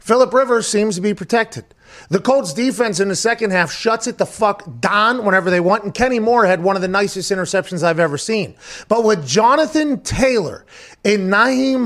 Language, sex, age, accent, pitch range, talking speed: English, male, 30-49, American, 180-235 Hz, 195 wpm